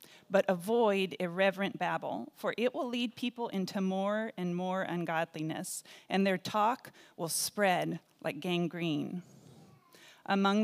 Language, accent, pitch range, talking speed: English, American, 180-220 Hz, 125 wpm